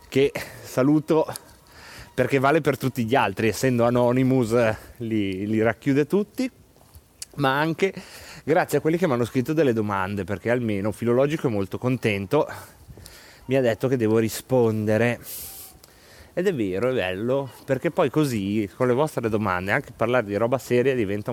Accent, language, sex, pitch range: native, Italian, male, 110-140 Hz